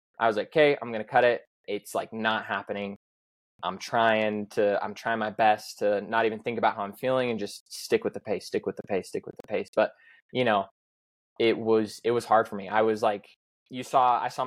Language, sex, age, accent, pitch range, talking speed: English, male, 20-39, American, 100-120 Hz, 245 wpm